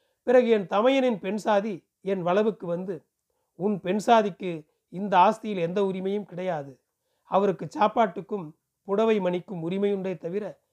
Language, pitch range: Tamil, 175-215 Hz